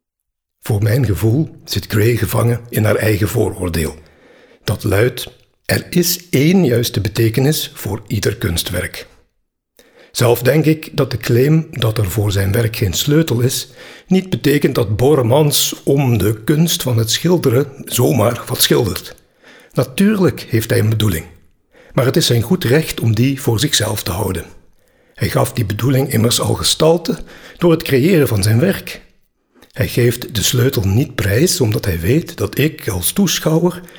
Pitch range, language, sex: 110-150 Hz, Dutch, male